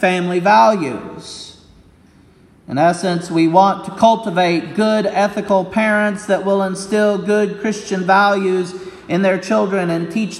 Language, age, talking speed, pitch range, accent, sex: English, 40-59, 125 wpm, 165-200 Hz, American, male